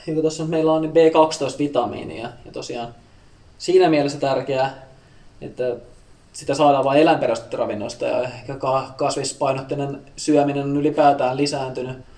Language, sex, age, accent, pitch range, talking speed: Finnish, male, 20-39, native, 125-145 Hz, 105 wpm